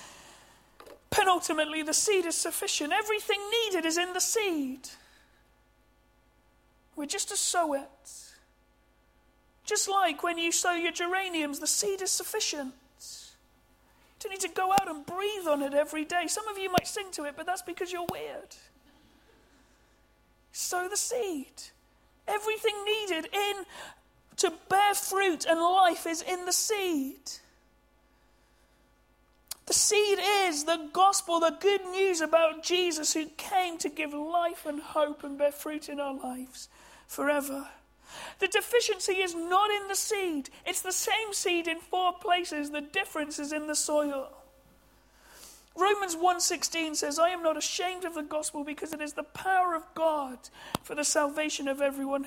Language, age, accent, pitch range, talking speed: English, 40-59, British, 295-380 Hz, 150 wpm